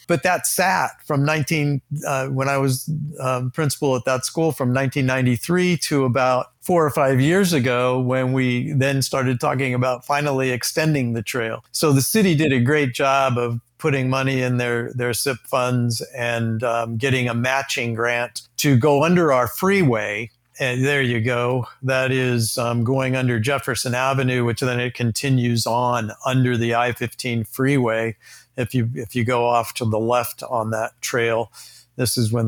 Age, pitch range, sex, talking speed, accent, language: 50-69, 120-140 Hz, male, 175 wpm, American, English